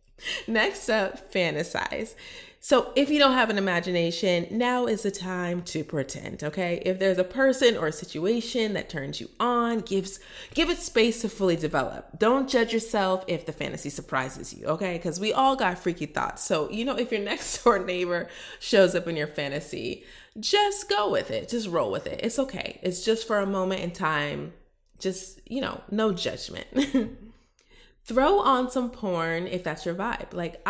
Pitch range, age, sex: 175-235 Hz, 30-49, female